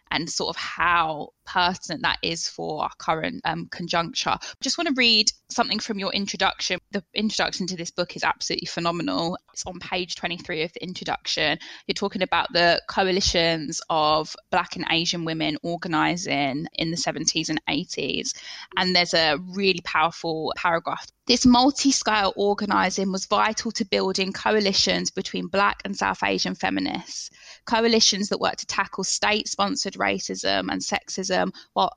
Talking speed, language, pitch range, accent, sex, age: 150 wpm, English, 180-205 Hz, British, female, 10-29